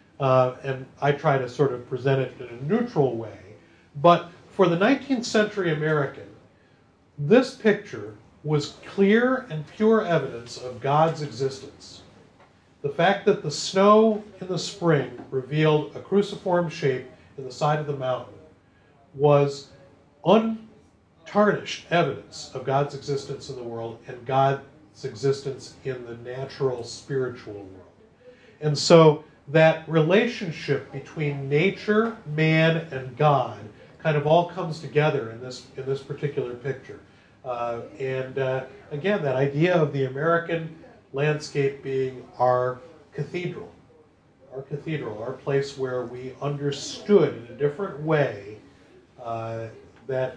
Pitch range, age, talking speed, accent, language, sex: 130-165 Hz, 40-59, 130 wpm, American, English, male